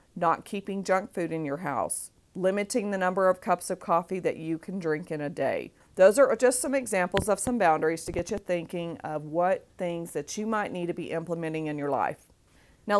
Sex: female